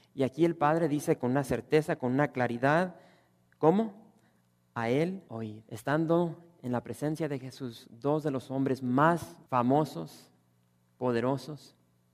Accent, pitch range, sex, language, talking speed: Mexican, 120-175 Hz, male, English, 140 wpm